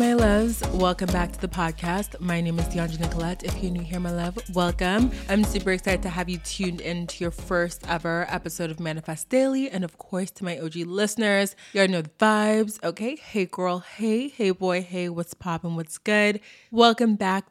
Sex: female